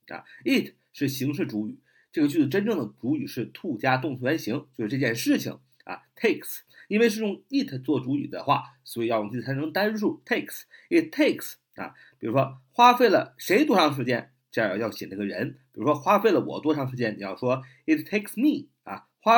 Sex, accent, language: male, native, Chinese